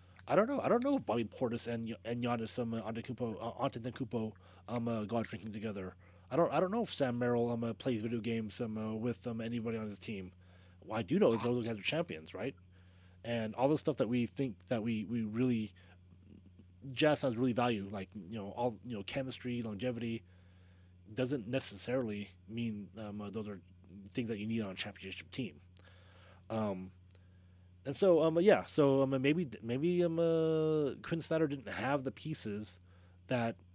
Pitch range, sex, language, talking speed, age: 95-125 Hz, male, English, 205 wpm, 20-39